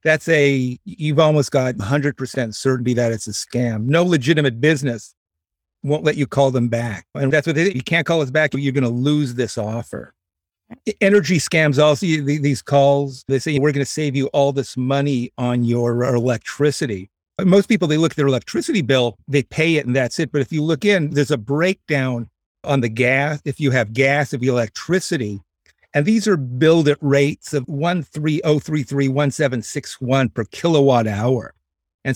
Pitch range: 125-160 Hz